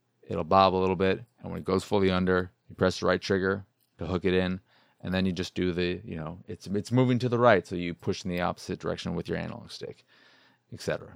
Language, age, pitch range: English, 30-49, 95-120 Hz